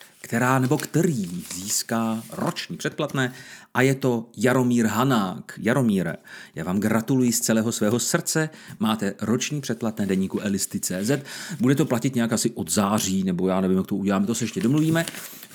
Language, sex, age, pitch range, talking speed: Czech, male, 40-59, 110-170 Hz, 160 wpm